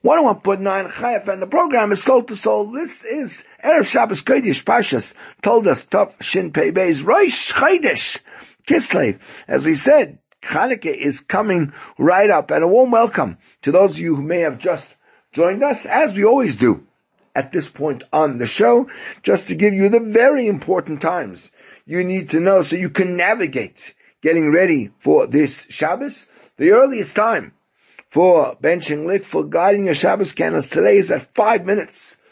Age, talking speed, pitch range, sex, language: 50-69, 175 wpm, 150-235 Hz, male, English